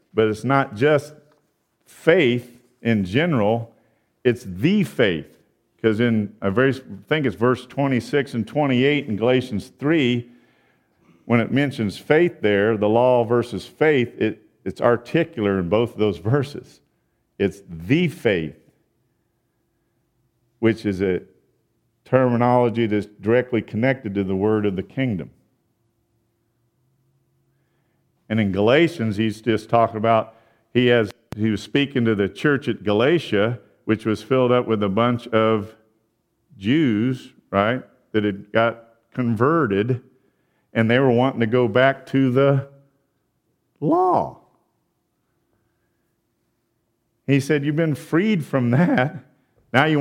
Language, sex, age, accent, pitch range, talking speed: English, male, 50-69, American, 110-135 Hz, 125 wpm